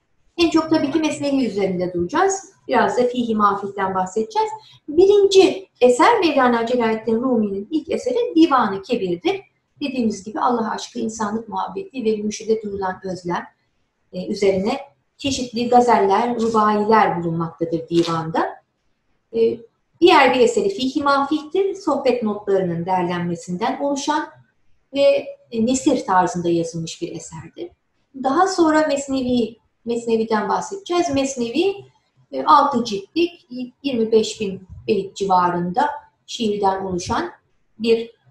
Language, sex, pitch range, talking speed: Turkish, female, 205-310 Hz, 100 wpm